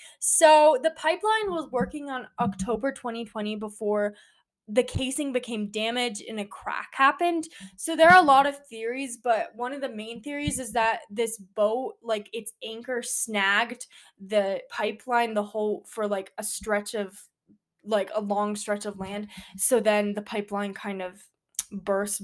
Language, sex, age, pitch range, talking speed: English, female, 10-29, 205-250 Hz, 160 wpm